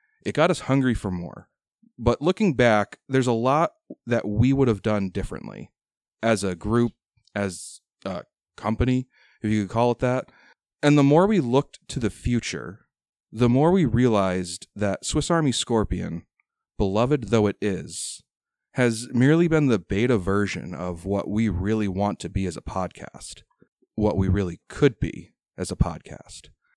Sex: male